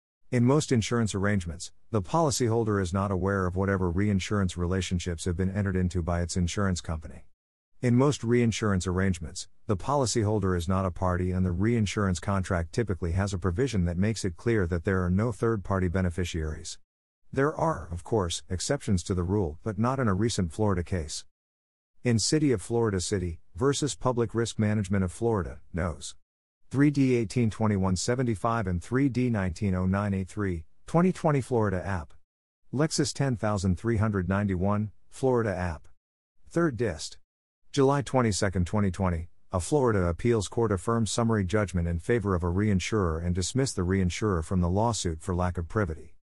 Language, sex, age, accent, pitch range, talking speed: English, male, 50-69, American, 90-115 Hz, 150 wpm